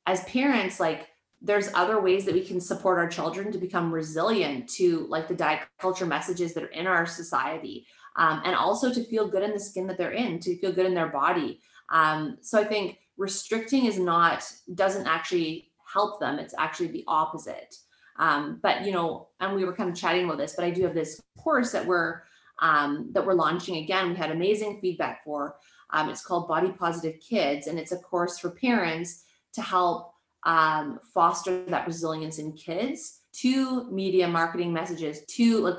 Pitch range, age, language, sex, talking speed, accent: 170-215 Hz, 20-39, English, female, 195 wpm, American